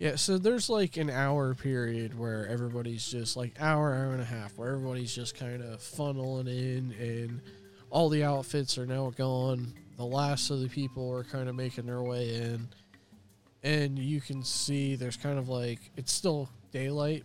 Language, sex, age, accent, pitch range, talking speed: English, male, 20-39, American, 120-150 Hz, 185 wpm